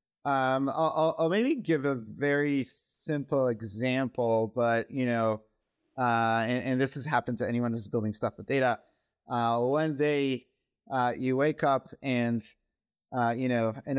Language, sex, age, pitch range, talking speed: English, male, 30-49, 120-145 Hz, 155 wpm